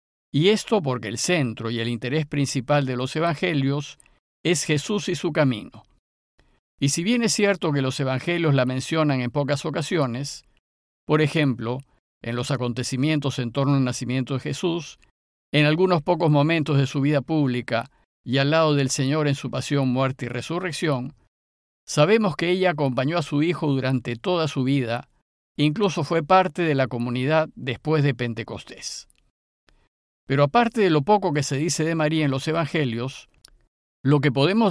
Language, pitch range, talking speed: Spanish, 130-165 Hz, 165 wpm